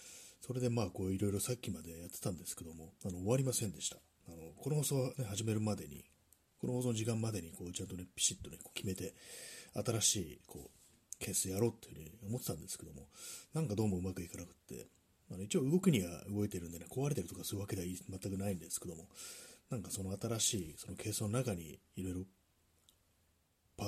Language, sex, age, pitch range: Japanese, male, 30-49, 90-120 Hz